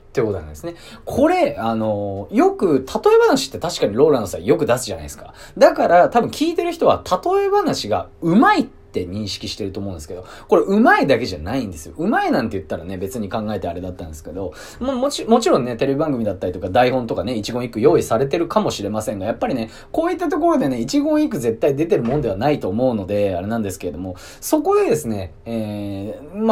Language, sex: Japanese, male